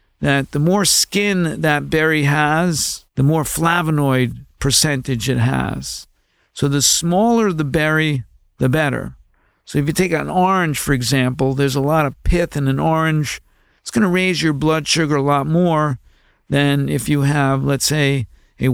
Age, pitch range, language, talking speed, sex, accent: 50-69, 135-165 Hz, English, 170 wpm, male, American